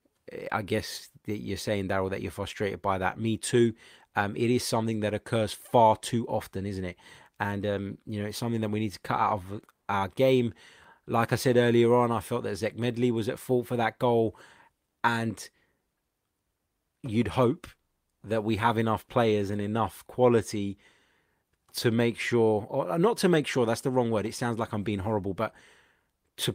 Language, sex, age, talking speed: English, male, 20-39, 195 wpm